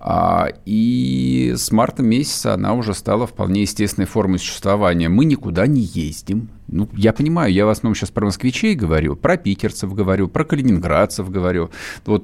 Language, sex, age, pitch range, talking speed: Russian, male, 50-69, 95-115 Hz, 155 wpm